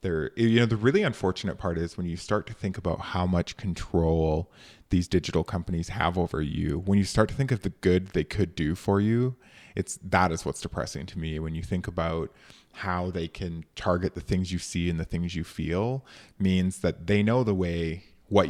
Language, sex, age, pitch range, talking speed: English, male, 20-39, 85-100 Hz, 215 wpm